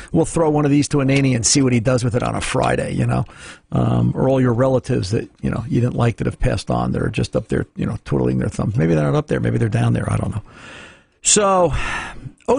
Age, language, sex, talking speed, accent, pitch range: 50-69, English, male, 270 wpm, American, 125-155 Hz